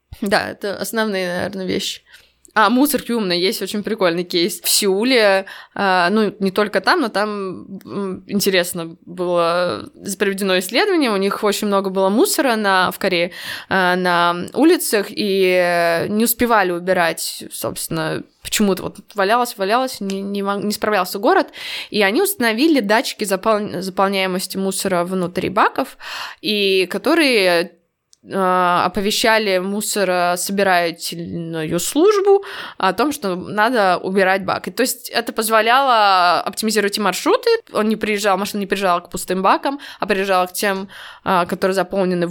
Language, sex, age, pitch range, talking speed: Russian, female, 20-39, 185-225 Hz, 130 wpm